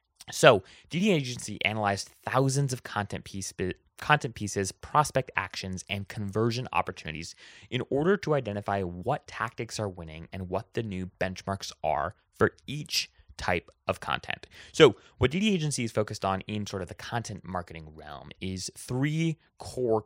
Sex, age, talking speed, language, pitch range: male, 20-39, 155 wpm, English, 90-120 Hz